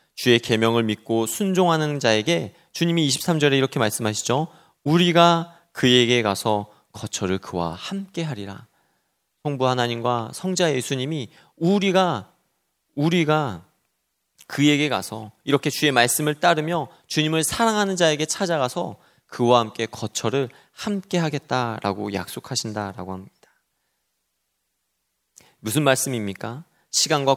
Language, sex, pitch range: Korean, male, 115-165 Hz